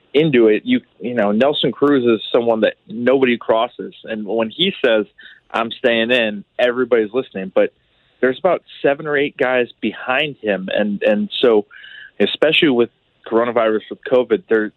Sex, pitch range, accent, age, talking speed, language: male, 110-135 Hz, American, 30-49, 160 wpm, English